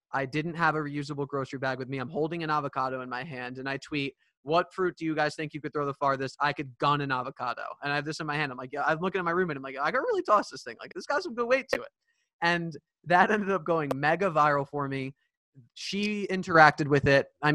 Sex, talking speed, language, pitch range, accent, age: male, 275 wpm, English, 140-170 Hz, American, 20-39